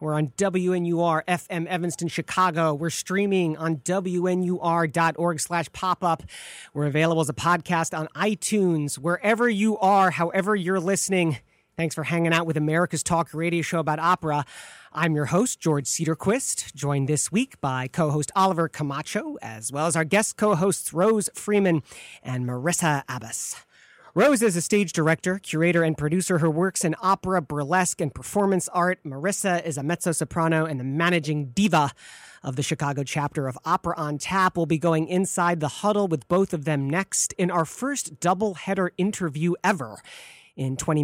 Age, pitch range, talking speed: 40-59, 155-185 Hz, 165 wpm